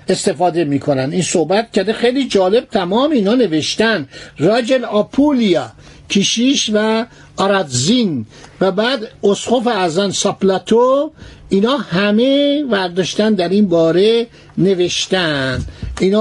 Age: 60-79